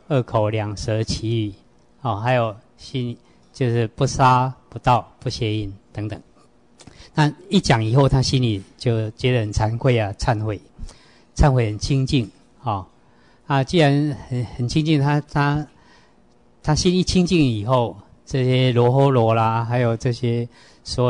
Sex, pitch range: male, 105-130 Hz